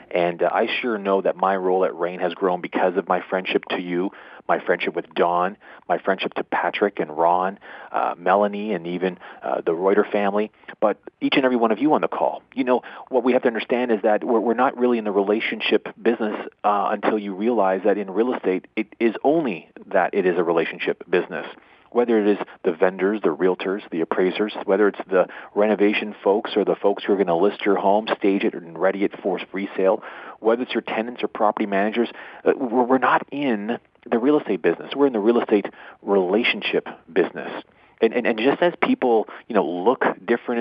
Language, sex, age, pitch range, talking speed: English, male, 40-59, 95-120 Hz, 210 wpm